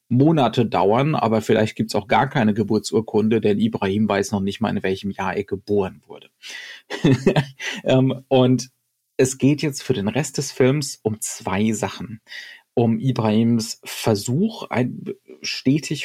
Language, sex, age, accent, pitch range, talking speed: German, male, 30-49, German, 110-135 Hz, 145 wpm